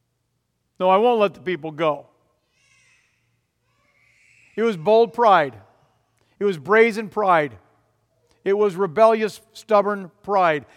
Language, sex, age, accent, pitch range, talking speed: English, male, 50-69, American, 150-215 Hz, 110 wpm